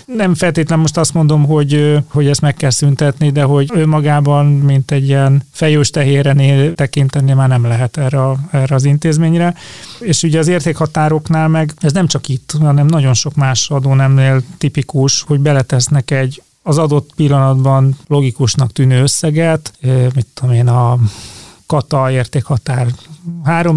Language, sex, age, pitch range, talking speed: Hungarian, male, 30-49, 135-155 Hz, 150 wpm